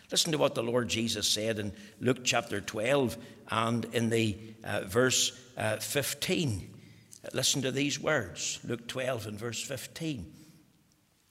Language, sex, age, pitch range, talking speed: English, male, 60-79, 125-170 Hz, 145 wpm